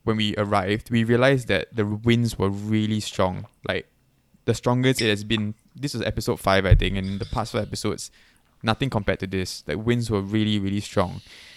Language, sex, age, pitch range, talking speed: English, male, 20-39, 100-115 Hz, 200 wpm